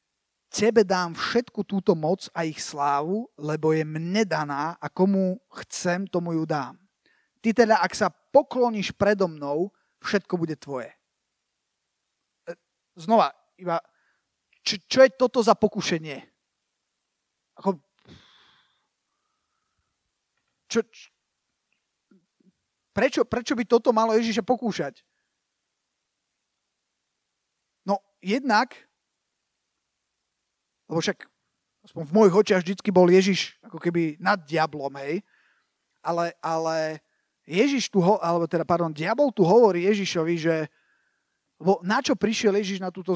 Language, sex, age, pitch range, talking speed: Slovak, male, 30-49, 165-225 Hz, 110 wpm